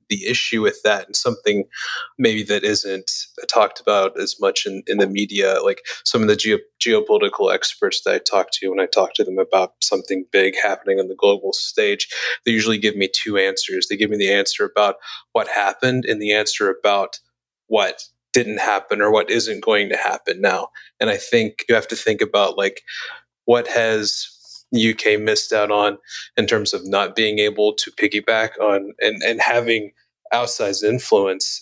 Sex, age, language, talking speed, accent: male, 30-49, English, 185 wpm, American